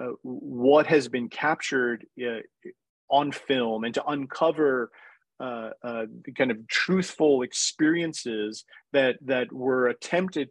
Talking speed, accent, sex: 125 wpm, American, male